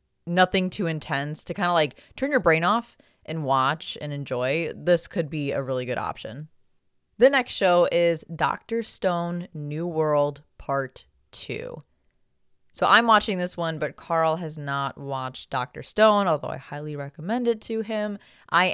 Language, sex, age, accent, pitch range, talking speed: English, female, 20-39, American, 140-180 Hz, 165 wpm